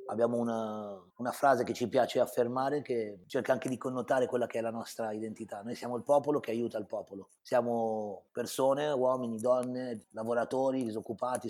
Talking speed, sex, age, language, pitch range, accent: 170 wpm, male, 30-49, Italian, 115-125 Hz, native